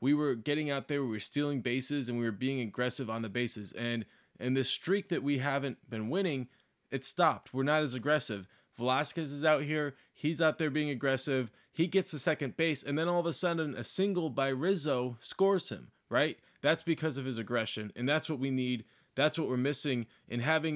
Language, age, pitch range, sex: English, 20-39, 125-155 Hz, male